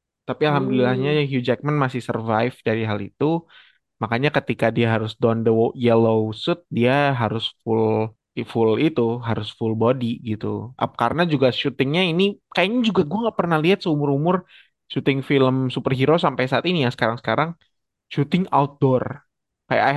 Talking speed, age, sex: 155 wpm, 20-39, male